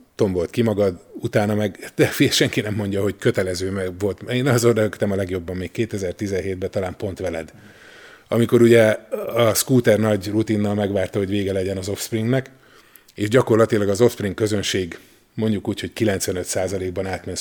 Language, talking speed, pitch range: Hungarian, 155 wpm, 95-125 Hz